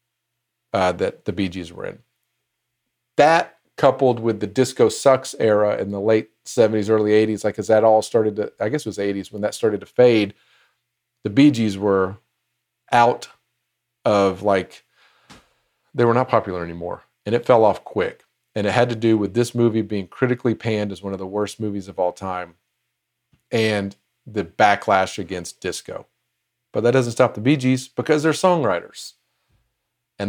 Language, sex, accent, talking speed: English, male, American, 175 wpm